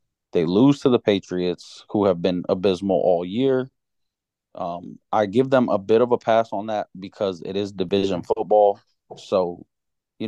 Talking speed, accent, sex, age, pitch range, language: 170 wpm, American, male, 20-39, 95-115 Hz, English